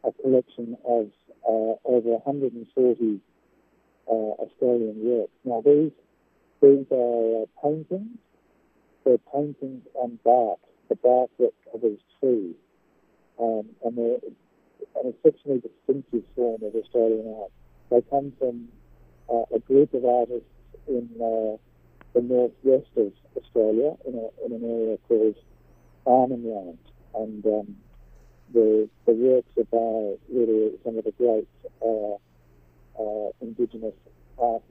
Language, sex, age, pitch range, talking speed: English, male, 50-69, 110-135 Hz, 125 wpm